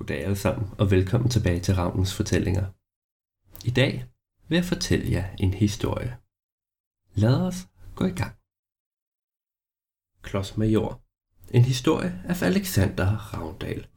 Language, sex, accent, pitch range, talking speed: Danish, male, native, 95-120 Hz, 120 wpm